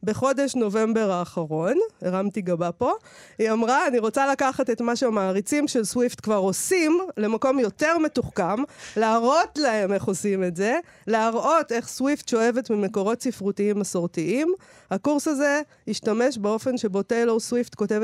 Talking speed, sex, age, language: 140 wpm, female, 40-59, Hebrew